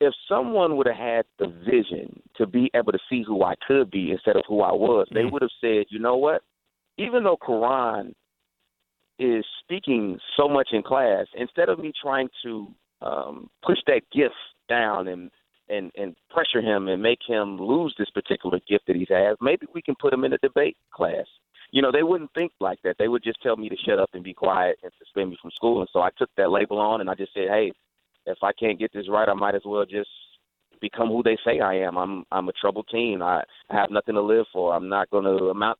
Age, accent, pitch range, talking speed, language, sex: 30-49, American, 95-115 Hz, 235 wpm, English, male